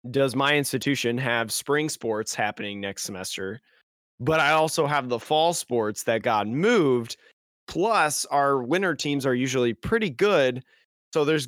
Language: English